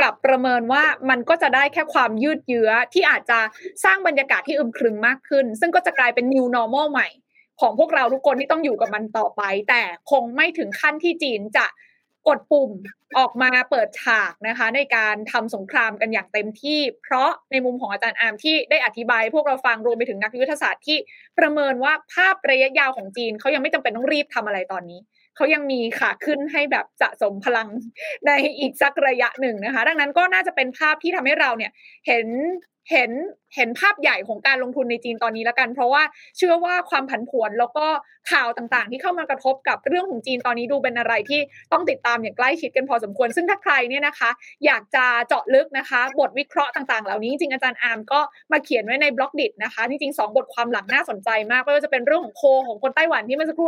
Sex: female